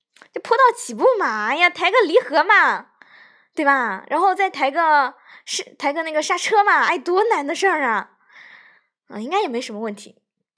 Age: 20-39